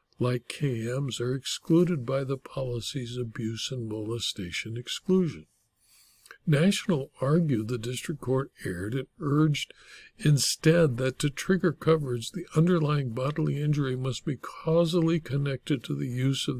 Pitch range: 125-165 Hz